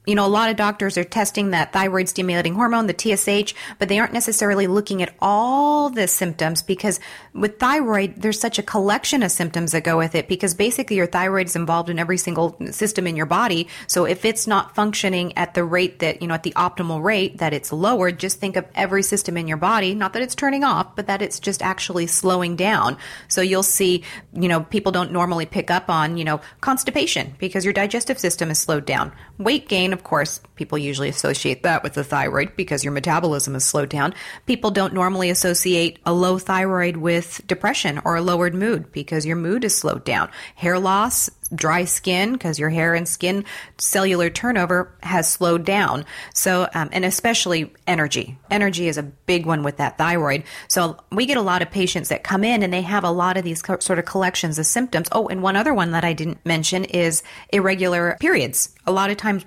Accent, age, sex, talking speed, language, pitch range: American, 30-49, female, 210 wpm, English, 170-205 Hz